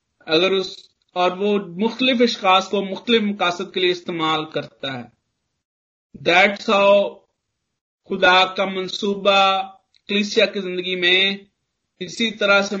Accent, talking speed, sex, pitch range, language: native, 120 wpm, male, 175-200 Hz, Hindi